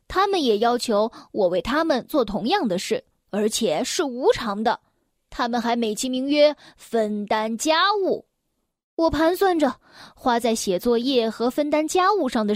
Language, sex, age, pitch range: Chinese, female, 10-29, 210-310 Hz